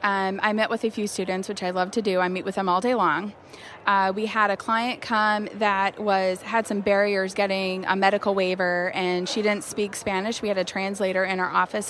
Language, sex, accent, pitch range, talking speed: English, female, American, 190-220 Hz, 230 wpm